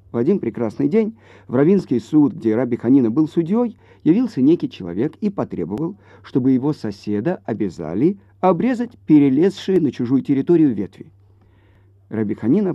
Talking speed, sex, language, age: 130 wpm, male, Russian, 50-69